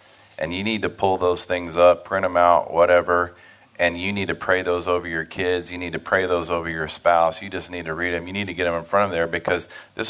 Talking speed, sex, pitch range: 275 wpm, male, 80-90 Hz